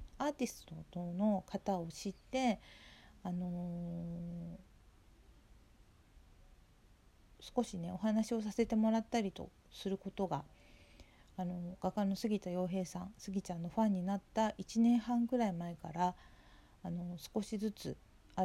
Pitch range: 180-225 Hz